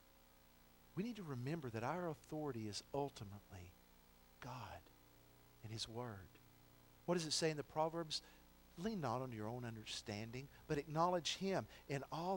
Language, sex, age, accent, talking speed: English, male, 50-69, American, 150 wpm